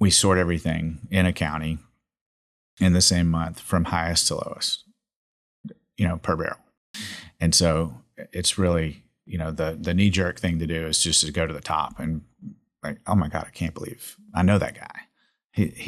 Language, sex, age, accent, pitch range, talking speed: English, male, 30-49, American, 80-90 Hz, 195 wpm